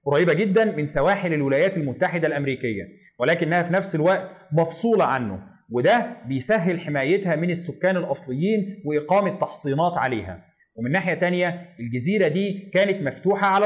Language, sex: Arabic, male